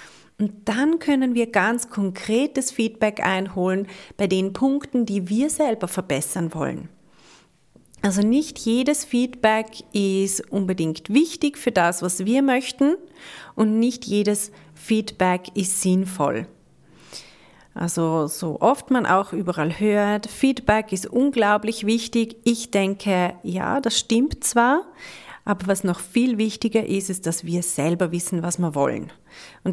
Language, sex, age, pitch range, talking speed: German, female, 40-59, 190-250 Hz, 135 wpm